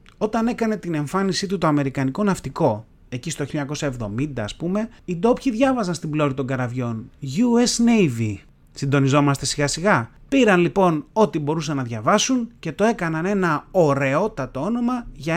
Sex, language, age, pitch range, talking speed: male, Greek, 30-49, 135-200 Hz, 150 wpm